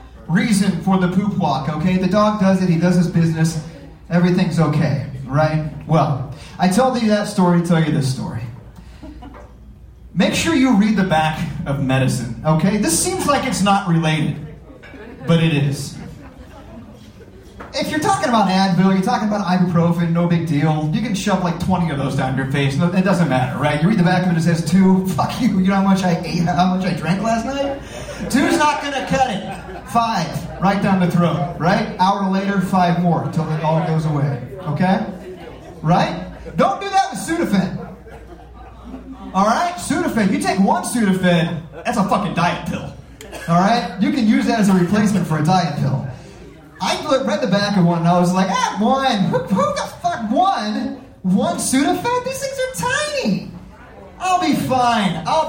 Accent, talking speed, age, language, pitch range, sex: American, 190 wpm, 30-49, English, 165-225 Hz, male